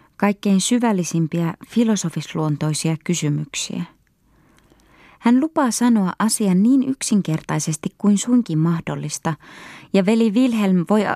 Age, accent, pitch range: 20-39, native, 160-210 Hz